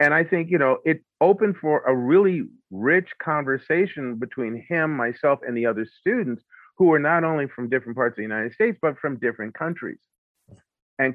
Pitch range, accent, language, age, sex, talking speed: 105-140 Hz, American, English, 40-59, male, 190 wpm